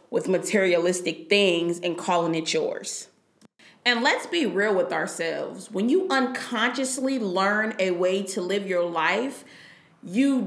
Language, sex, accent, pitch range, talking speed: English, female, American, 190-245 Hz, 140 wpm